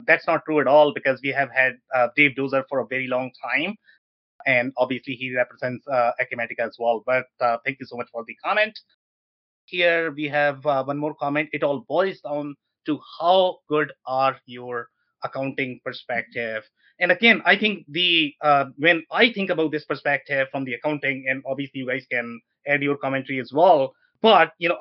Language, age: English, 30-49